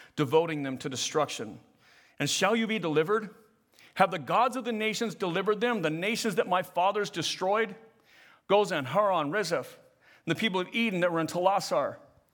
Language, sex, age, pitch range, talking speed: English, male, 40-59, 145-210 Hz, 170 wpm